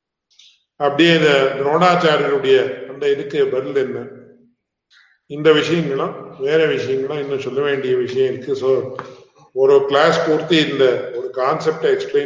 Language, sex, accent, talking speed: English, male, Indian, 80 wpm